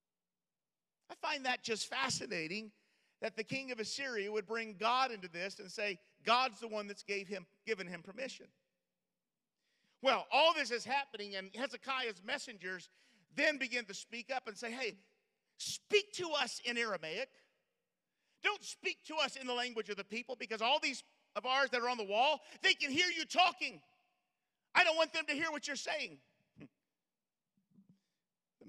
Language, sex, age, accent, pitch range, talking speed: English, male, 50-69, American, 215-310 Hz, 170 wpm